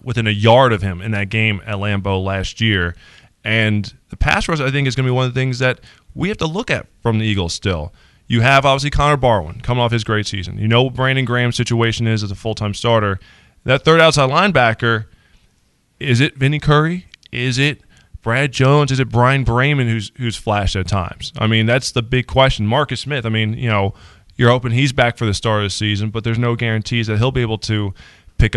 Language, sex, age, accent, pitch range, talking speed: English, male, 20-39, American, 105-130 Hz, 235 wpm